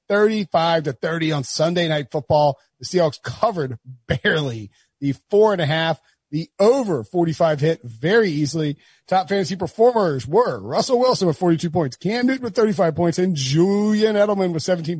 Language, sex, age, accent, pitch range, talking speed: English, male, 40-59, American, 145-205 Hz, 150 wpm